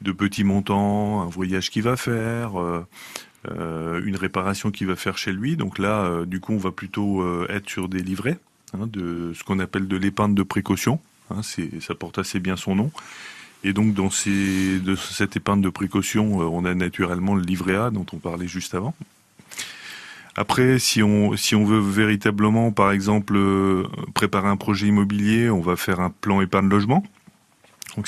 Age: 30-49